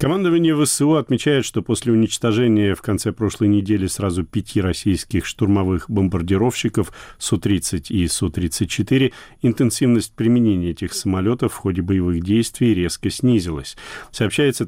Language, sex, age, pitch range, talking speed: Russian, male, 40-59, 95-115 Hz, 120 wpm